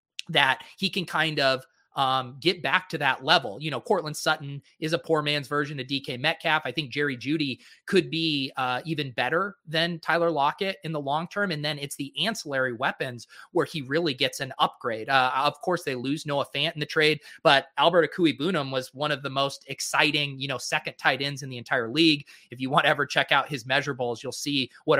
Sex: male